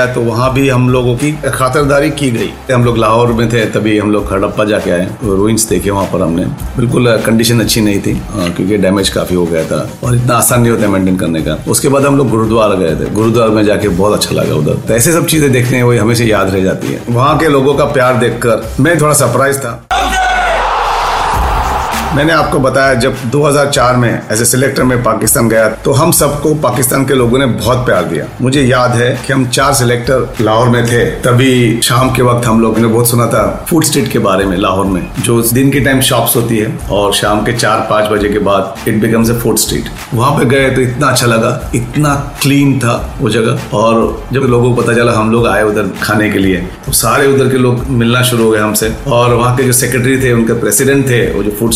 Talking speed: 215 wpm